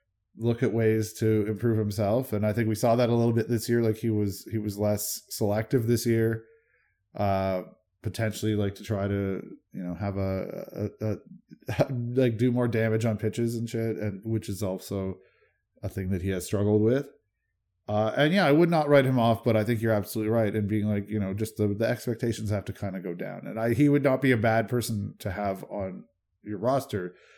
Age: 20-39